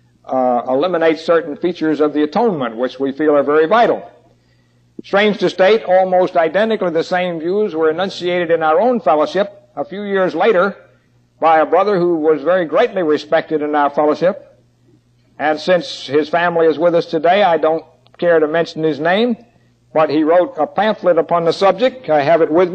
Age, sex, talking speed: 60-79, male, 180 wpm